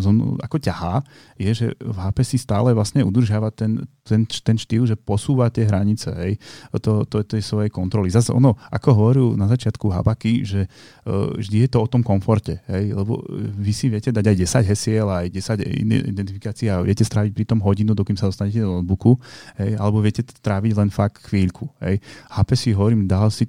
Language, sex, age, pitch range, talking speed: Slovak, male, 30-49, 100-120 Hz, 195 wpm